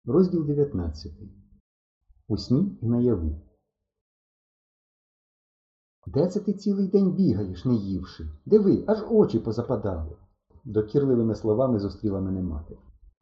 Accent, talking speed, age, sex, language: native, 110 wpm, 50-69, male, Ukrainian